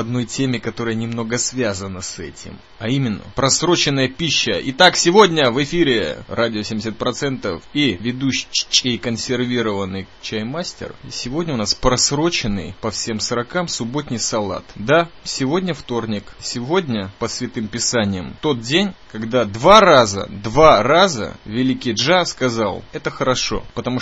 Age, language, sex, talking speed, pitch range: 20-39, Russian, male, 125 wpm, 110-135 Hz